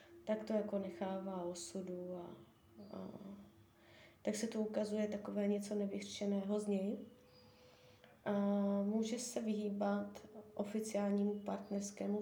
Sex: female